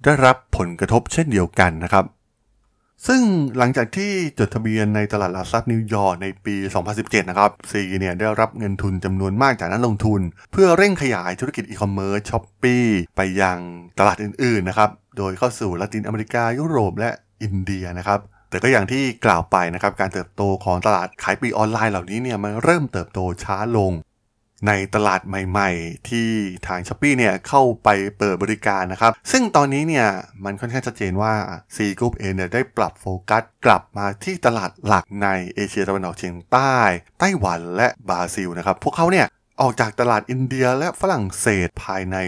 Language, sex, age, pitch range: Thai, male, 20-39, 95-120 Hz